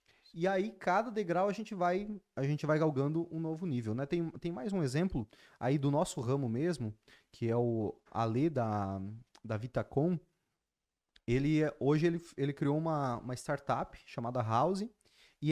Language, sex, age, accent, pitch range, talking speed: Portuguese, male, 20-39, Brazilian, 120-170 Hz, 165 wpm